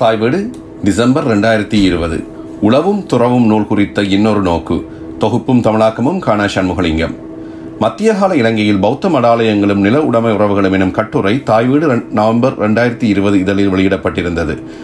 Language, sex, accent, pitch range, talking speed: Tamil, male, native, 95-115 Hz, 115 wpm